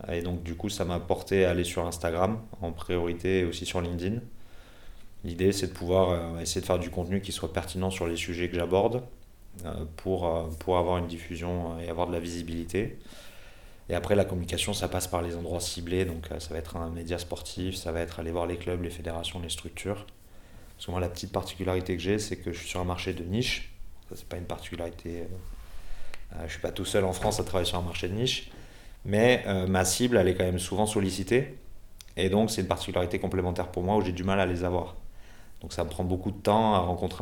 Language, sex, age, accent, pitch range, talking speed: French, male, 30-49, French, 85-95 Hz, 240 wpm